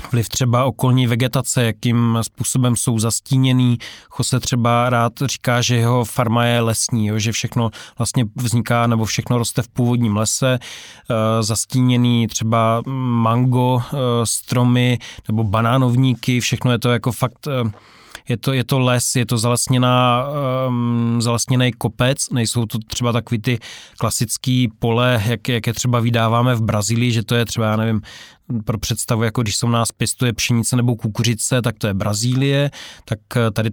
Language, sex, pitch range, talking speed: Slovak, male, 115-125 Hz, 150 wpm